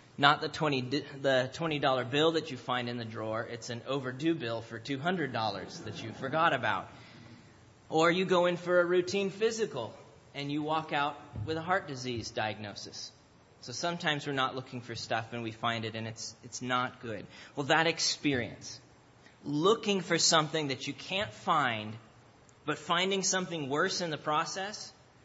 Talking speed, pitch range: 165 wpm, 125-160 Hz